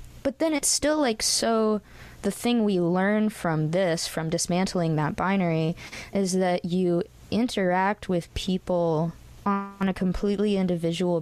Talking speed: 140 wpm